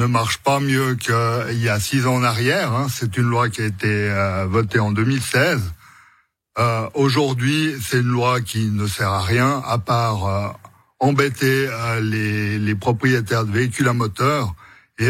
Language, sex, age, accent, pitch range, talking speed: French, male, 60-79, French, 115-135 Hz, 180 wpm